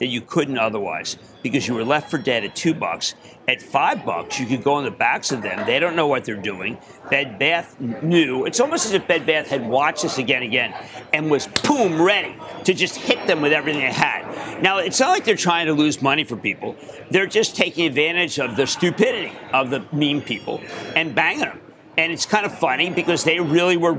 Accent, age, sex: American, 50-69, male